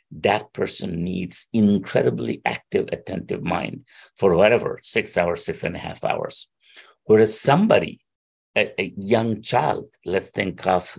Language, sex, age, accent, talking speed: English, male, 60-79, Indian, 135 wpm